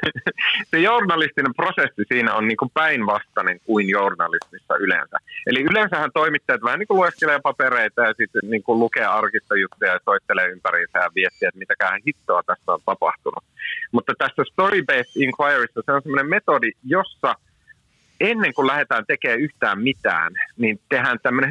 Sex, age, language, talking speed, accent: male, 30-49, Finnish, 140 wpm, native